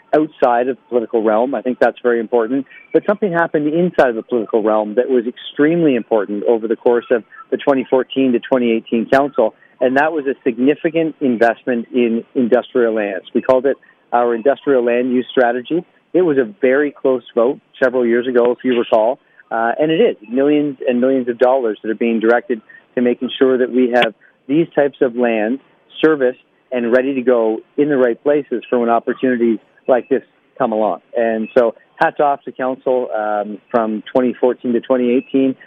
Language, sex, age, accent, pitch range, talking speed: English, male, 40-59, American, 115-135 Hz, 185 wpm